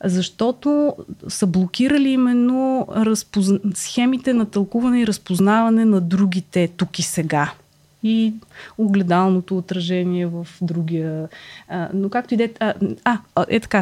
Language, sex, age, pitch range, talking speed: Bulgarian, female, 20-39, 165-225 Hz, 120 wpm